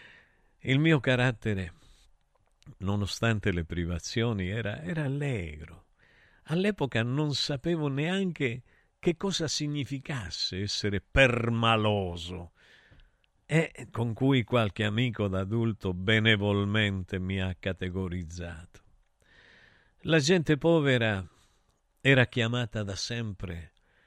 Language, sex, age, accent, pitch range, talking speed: Italian, male, 50-69, native, 95-130 Hz, 85 wpm